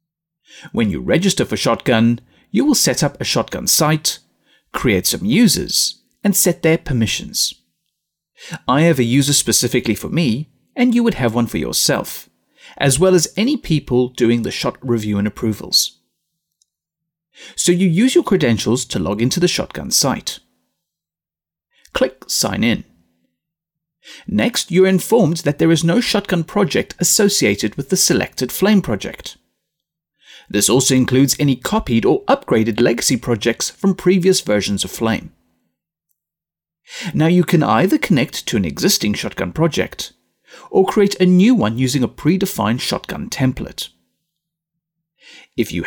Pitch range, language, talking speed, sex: 115-175 Hz, English, 145 wpm, male